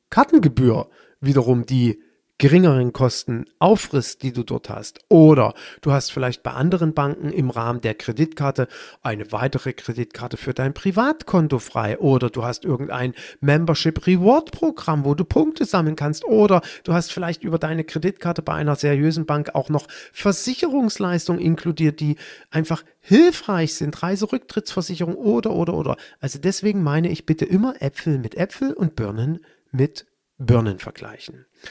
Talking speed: 140 wpm